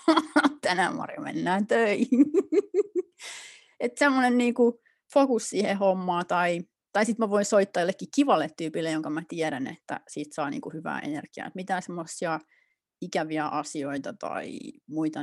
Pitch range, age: 155-235 Hz, 30-49